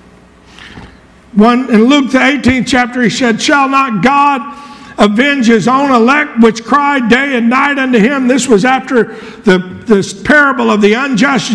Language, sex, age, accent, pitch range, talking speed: English, male, 50-69, American, 230-305 Hz, 150 wpm